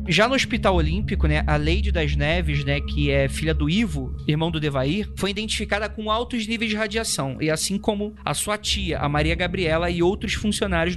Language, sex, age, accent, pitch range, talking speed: Portuguese, male, 20-39, Brazilian, 160-195 Hz, 200 wpm